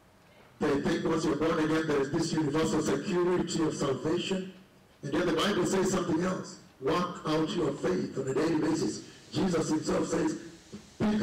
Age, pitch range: 60-79, 140-170 Hz